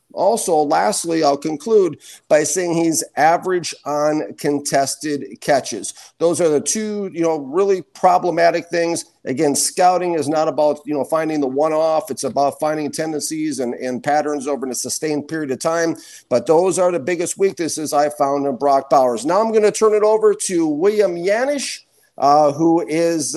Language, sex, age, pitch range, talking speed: English, male, 50-69, 145-170 Hz, 170 wpm